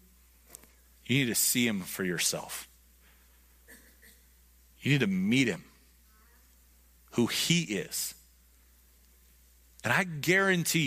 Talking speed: 100 wpm